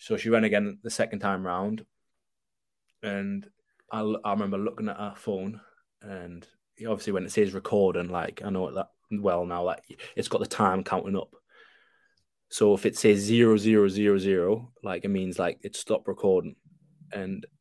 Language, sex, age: English, male, 20-39